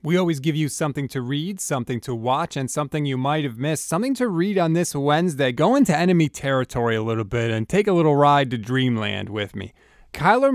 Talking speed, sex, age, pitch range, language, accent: 220 wpm, male, 30-49, 140-190 Hz, English, American